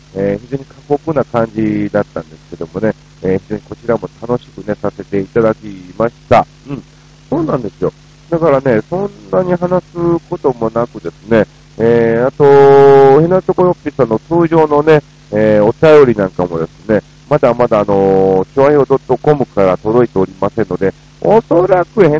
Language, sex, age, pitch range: Japanese, male, 40-59, 105-160 Hz